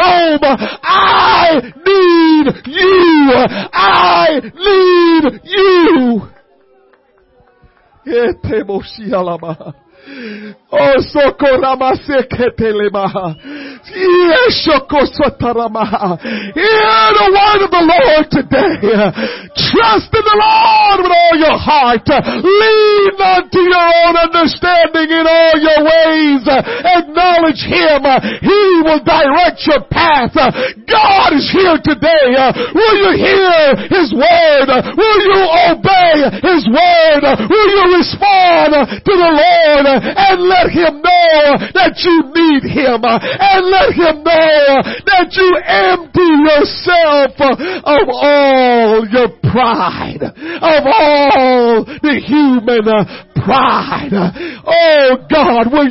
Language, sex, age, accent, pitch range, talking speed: English, male, 50-69, American, 265-355 Hz, 95 wpm